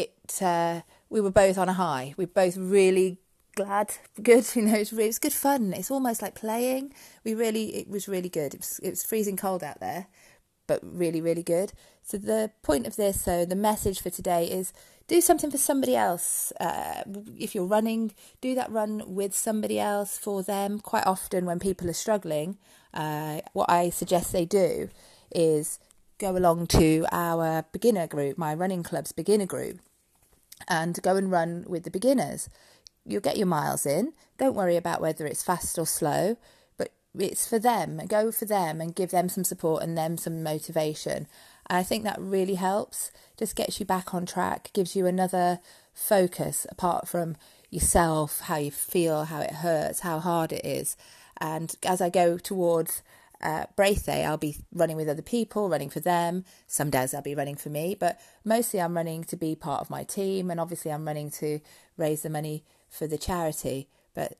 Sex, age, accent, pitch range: female, 30-49, British, 160-205 Hz